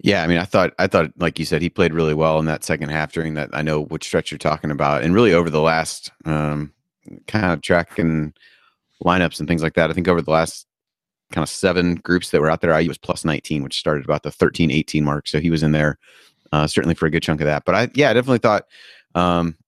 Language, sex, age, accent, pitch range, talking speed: English, male, 30-49, American, 80-90 Hz, 260 wpm